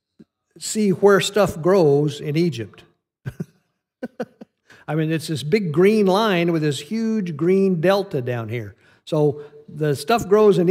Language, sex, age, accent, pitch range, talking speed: English, male, 50-69, American, 130-170 Hz, 140 wpm